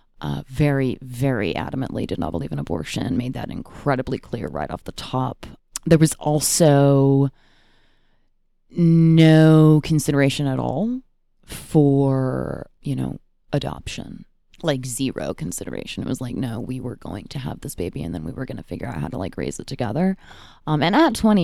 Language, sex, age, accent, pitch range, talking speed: English, female, 20-39, American, 130-155 Hz, 170 wpm